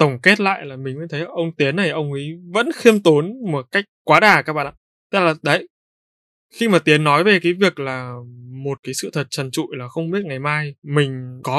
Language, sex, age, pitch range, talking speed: Vietnamese, male, 20-39, 130-160 Hz, 240 wpm